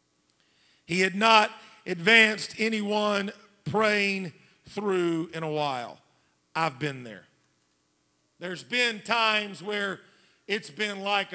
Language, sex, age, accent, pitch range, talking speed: English, male, 50-69, American, 150-205 Hz, 105 wpm